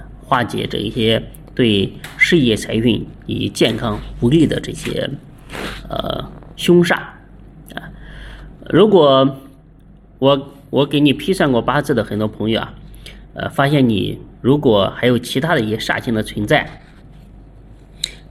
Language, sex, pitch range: Chinese, male, 115-155 Hz